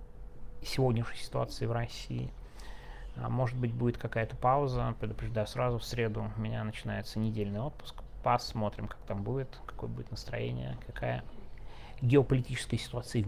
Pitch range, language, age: 110-125 Hz, Russian, 30-49